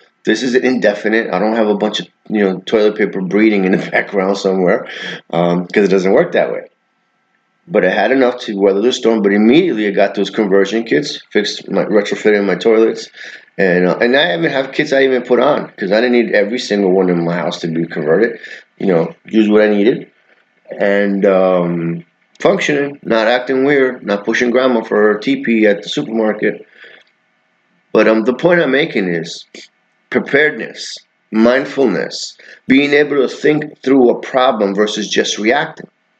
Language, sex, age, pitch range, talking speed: English, male, 30-49, 95-125 Hz, 180 wpm